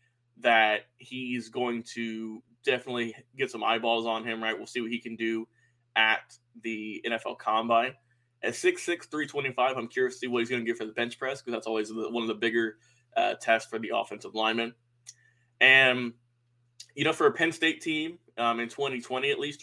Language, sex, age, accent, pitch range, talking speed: English, male, 20-39, American, 115-130 Hz, 195 wpm